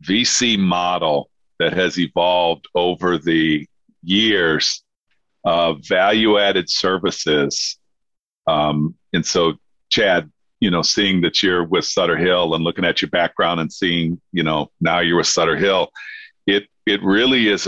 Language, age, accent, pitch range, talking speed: English, 50-69, American, 85-100 Hz, 140 wpm